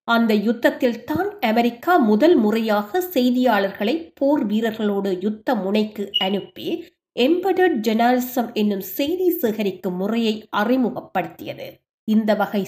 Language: Tamil